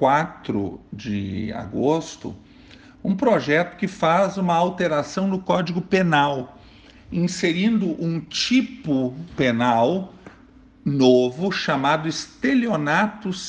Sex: male